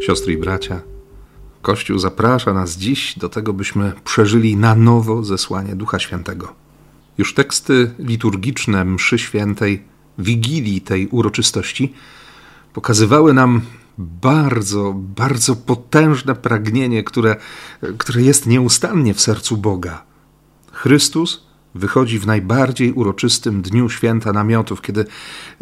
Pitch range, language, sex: 105-125 Hz, Polish, male